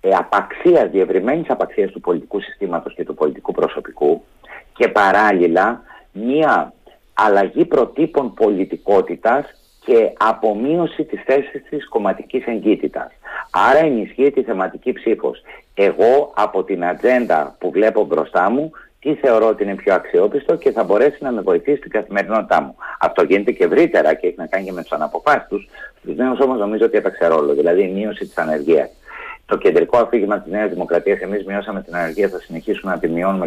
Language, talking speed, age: Greek, 160 wpm, 50-69